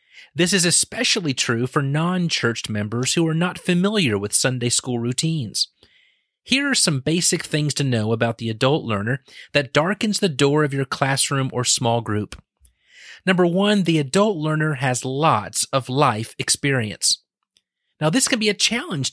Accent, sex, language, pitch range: American, male, English, 135-205 Hz